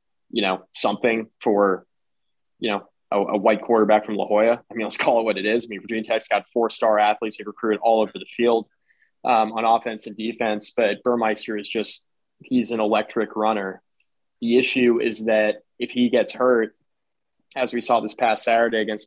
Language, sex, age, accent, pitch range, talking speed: English, male, 20-39, American, 105-120 Hz, 200 wpm